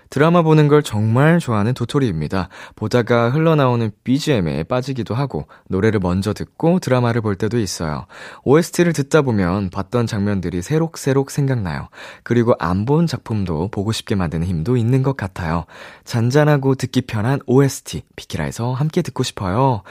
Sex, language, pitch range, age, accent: male, Korean, 100-145 Hz, 20-39, native